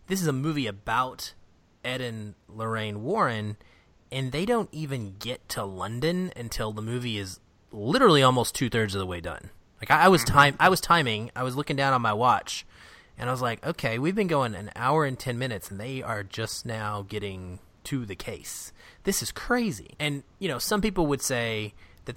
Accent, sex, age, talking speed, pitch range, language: American, male, 30-49, 205 wpm, 100-135 Hz, English